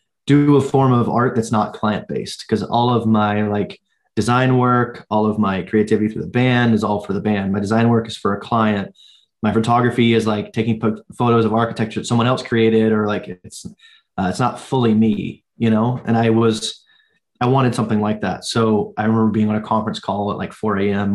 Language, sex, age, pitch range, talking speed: English, male, 20-39, 105-120 Hz, 215 wpm